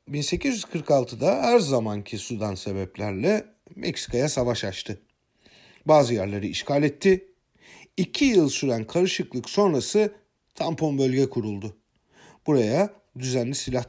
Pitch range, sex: 110-185 Hz, male